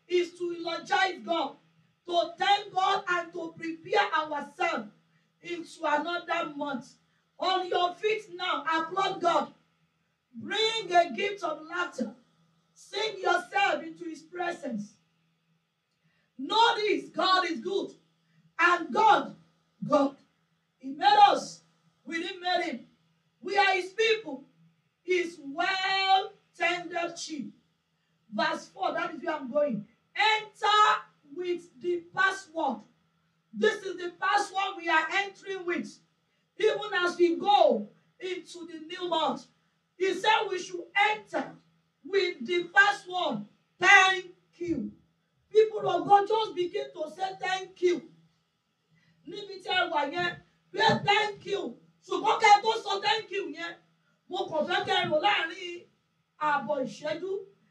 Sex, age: female, 40-59